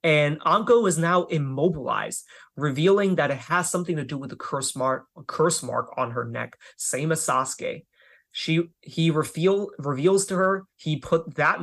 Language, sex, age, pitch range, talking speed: English, male, 20-39, 135-170 Hz, 170 wpm